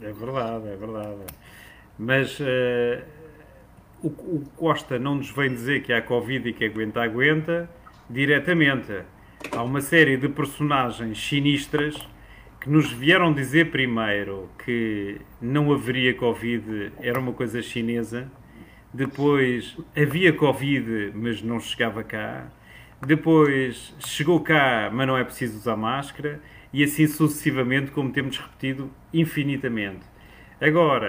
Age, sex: 40-59, male